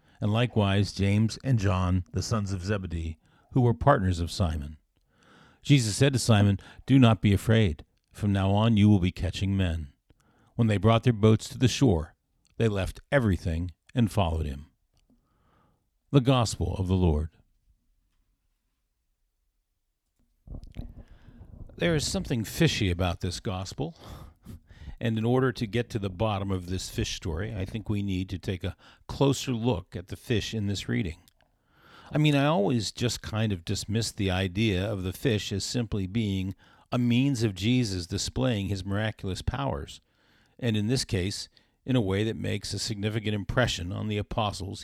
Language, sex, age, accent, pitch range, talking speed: English, male, 50-69, American, 95-120 Hz, 165 wpm